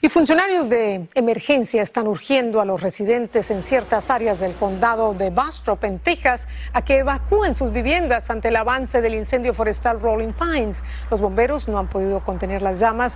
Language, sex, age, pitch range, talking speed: Spanish, female, 40-59, 210-275 Hz, 180 wpm